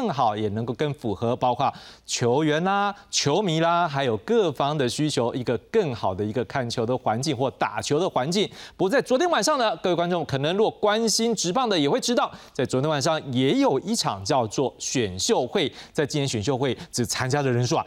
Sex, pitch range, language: male, 130-170 Hz, Chinese